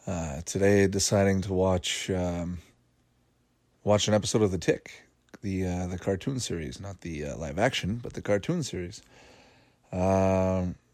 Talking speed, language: 150 wpm, English